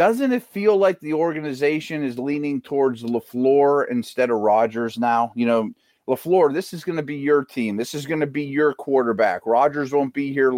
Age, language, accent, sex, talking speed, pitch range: 30-49, English, American, male, 200 wpm, 125-185 Hz